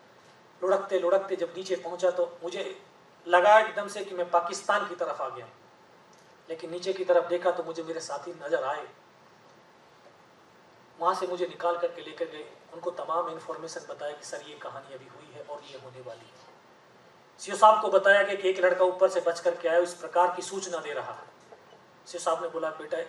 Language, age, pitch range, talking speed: Hindi, 30-49, 175-195 Hz, 190 wpm